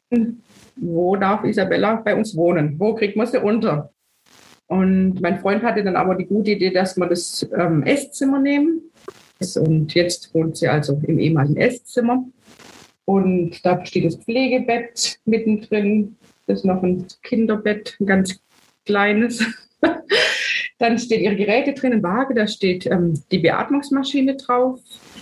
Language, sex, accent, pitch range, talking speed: German, female, German, 190-250 Hz, 145 wpm